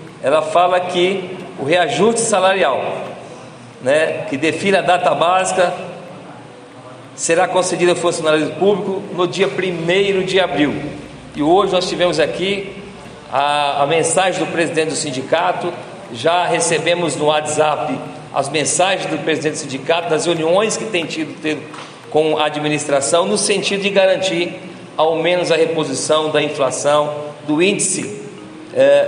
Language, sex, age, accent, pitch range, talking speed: Portuguese, male, 50-69, Brazilian, 160-190 Hz, 140 wpm